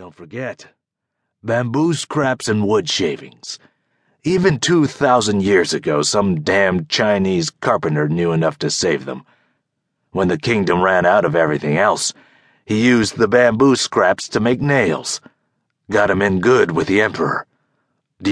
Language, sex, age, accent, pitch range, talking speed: English, male, 40-59, American, 95-140 Hz, 145 wpm